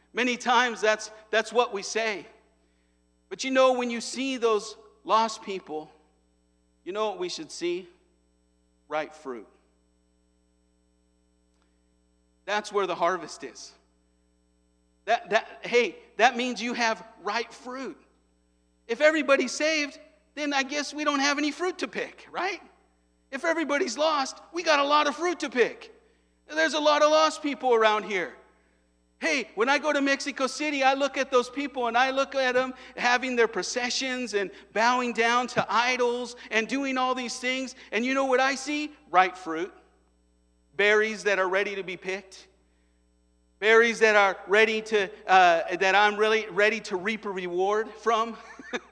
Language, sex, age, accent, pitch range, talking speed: English, male, 50-69, American, 165-260 Hz, 160 wpm